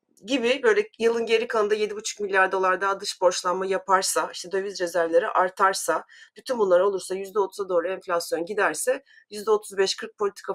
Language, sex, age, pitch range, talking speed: Turkish, female, 30-49, 180-255 Hz, 140 wpm